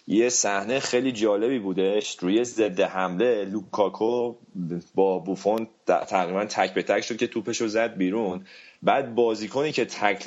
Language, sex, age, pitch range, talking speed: Persian, male, 30-49, 105-130 Hz, 145 wpm